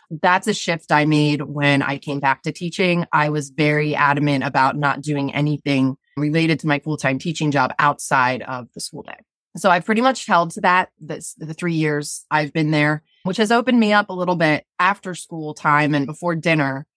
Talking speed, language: 200 wpm, English